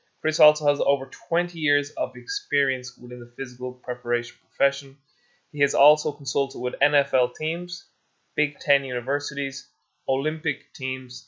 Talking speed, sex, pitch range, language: 135 wpm, male, 130-160 Hz, English